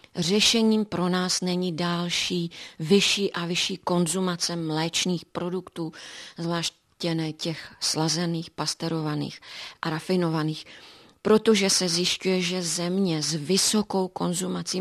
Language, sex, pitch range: Czech, female, 165-190 Hz